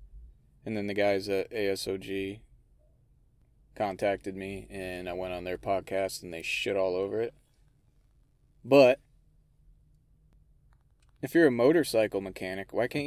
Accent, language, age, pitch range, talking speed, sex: American, English, 20-39, 95-130 Hz, 130 wpm, male